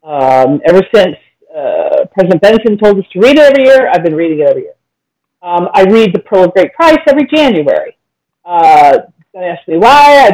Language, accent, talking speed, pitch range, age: English, American, 205 wpm, 175-245 Hz, 40-59